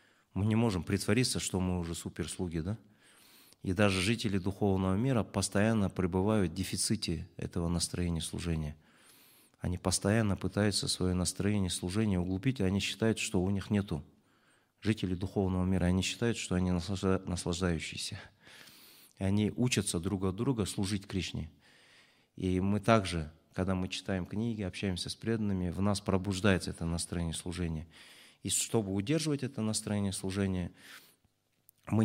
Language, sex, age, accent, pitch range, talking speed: Russian, male, 30-49, native, 90-105 Hz, 135 wpm